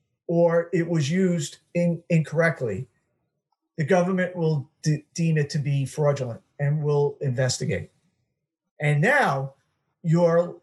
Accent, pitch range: American, 145-175 Hz